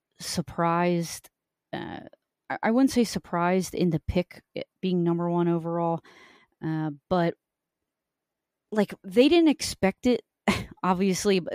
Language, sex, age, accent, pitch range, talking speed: English, female, 30-49, American, 160-190 Hz, 110 wpm